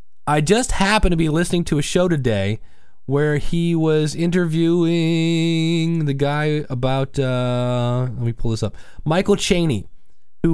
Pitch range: 130-170 Hz